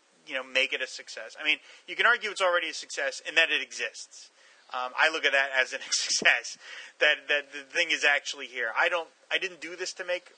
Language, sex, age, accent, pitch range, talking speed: English, male, 30-49, American, 130-160 Hz, 250 wpm